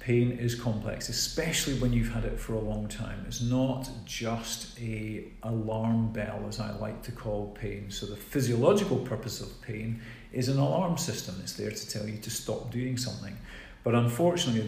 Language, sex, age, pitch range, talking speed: English, male, 40-59, 105-120 Hz, 185 wpm